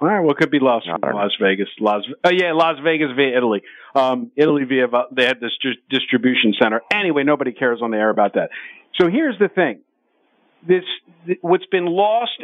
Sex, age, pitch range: male, 50-69, 125-155 Hz